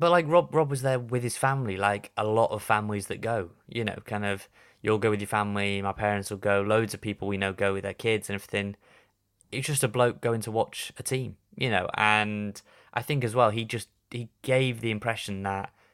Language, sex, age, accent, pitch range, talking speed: English, male, 20-39, British, 100-120 Hz, 235 wpm